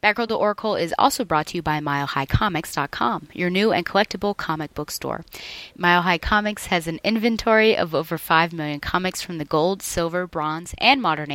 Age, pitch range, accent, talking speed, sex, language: 30-49, 155-205 Hz, American, 180 wpm, female, English